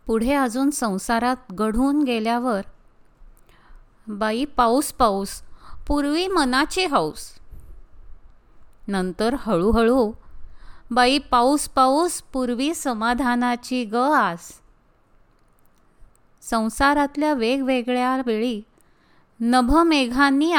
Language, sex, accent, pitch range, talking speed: Marathi, female, native, 215-265 Hz, 75 wpm